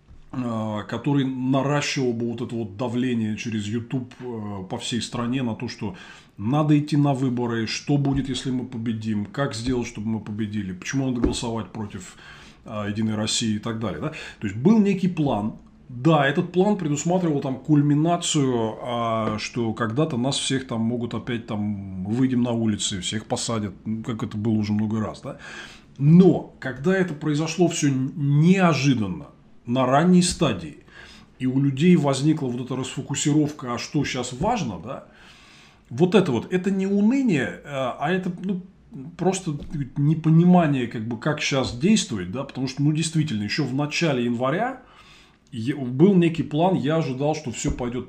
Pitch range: 115-155 Hz